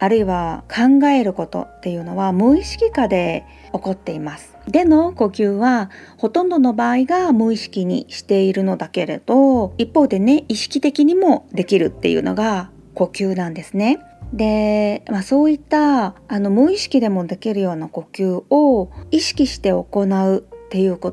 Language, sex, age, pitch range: Japanese, female, 40-59, 195-250 Hz